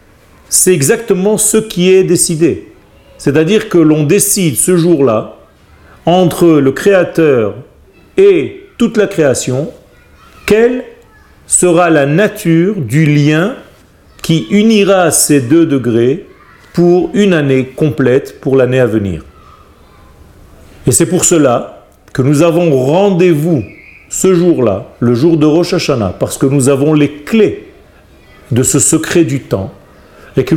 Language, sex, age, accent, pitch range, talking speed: French, male, 40-59, French, 130-185 Hz, 130 wpm